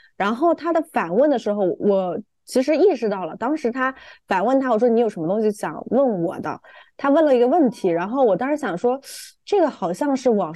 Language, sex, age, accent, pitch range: Chinese, female, 20-39, native, 195-275 Hz